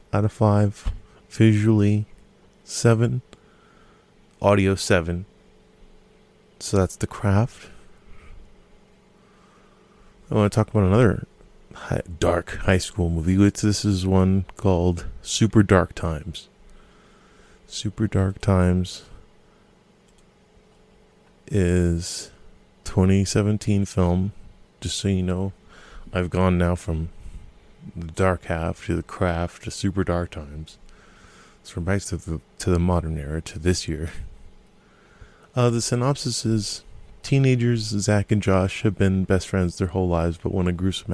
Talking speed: 120 wpm